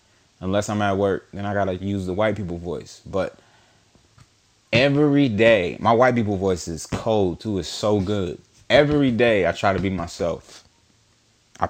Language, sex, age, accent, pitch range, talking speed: English, male, 20-39, American, 95-115 Hz, 175 wpm